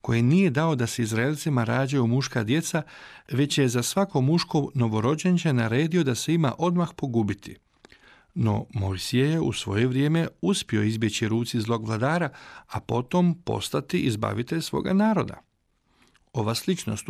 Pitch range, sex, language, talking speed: 115-155 Hz, male, Croatian, 140 wpm